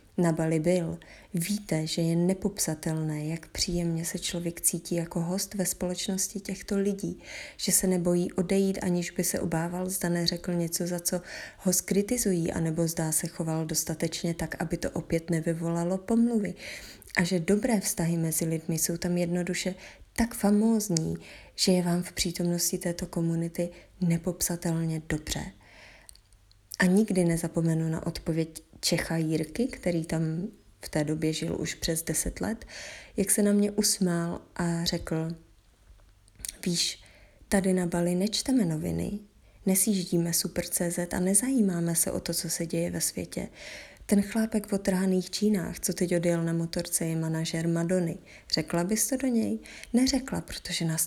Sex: female